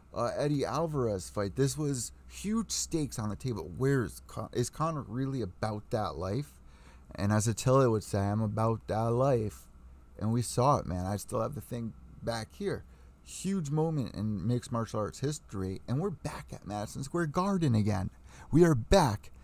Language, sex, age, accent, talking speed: English, male, 30-49, American, 180 wpm